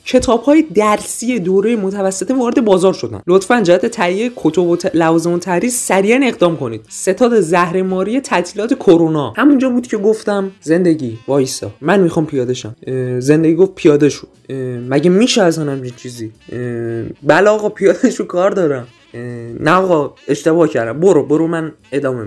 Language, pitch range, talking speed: Persian, 145-210 Hz, 145 wpm